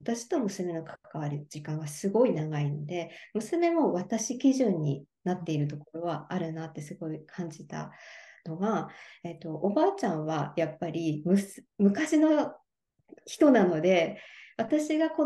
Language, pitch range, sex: Japanese, 170-250 Hz, male